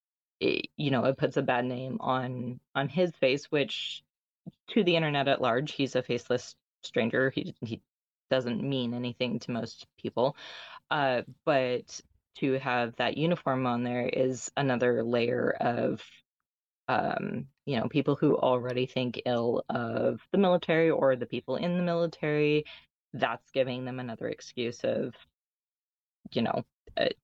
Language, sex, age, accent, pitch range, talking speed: English, female, 20-39, American, 125-145 Hz, 150 wpm